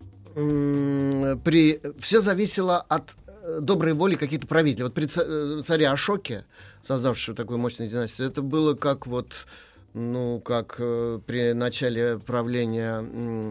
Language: Russian